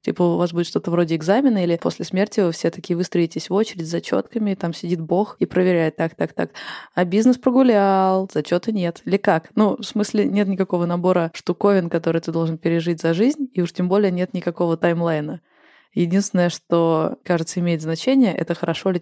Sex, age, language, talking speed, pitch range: female, 20-39, Russian, 185 wpm, 165-200 Hz